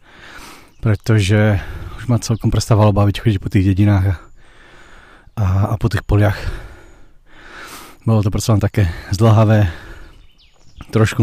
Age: 20-39